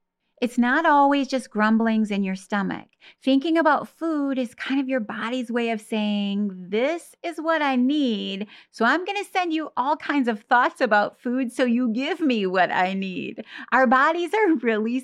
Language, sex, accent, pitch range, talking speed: English, female, American, 210-290 Hz, 190 wpm